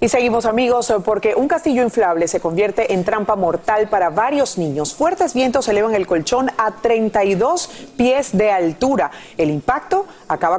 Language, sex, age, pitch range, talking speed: Spanish, female, 40-59, 180-245 Hz, 160 wpm